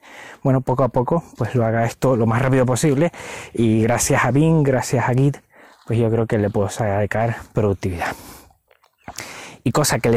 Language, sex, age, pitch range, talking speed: Spanish, male, 20-39, 110-140 Hz, 185 wpm